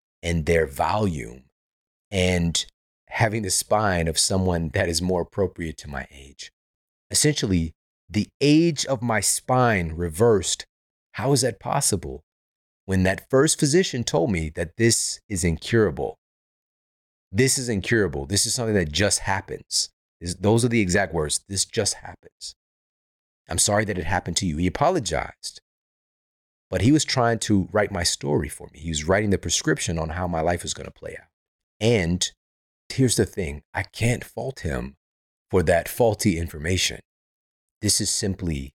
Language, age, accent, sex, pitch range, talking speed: English, 30-49, American, male, 80-105 Hz, 155 wpm